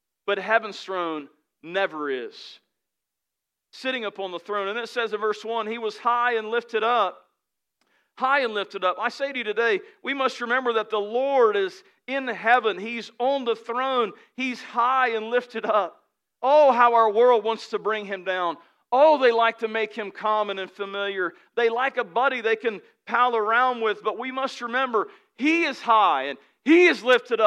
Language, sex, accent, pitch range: English, male, American, 210-250 Hz